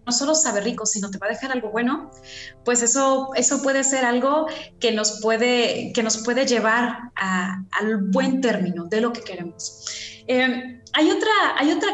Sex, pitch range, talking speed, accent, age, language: female, 220-275 Hz, 175 wpm, Mexican, 20-39, Spanish